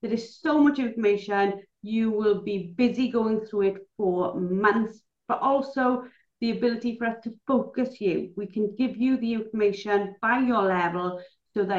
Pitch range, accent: 195-255 Hz, British